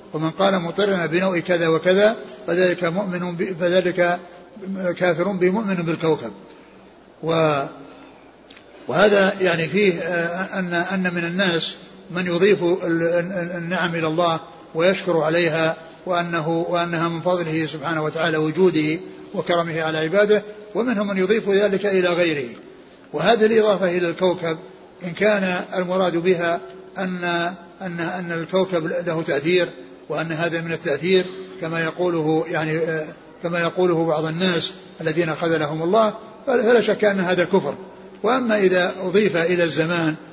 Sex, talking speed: male, 120 wpm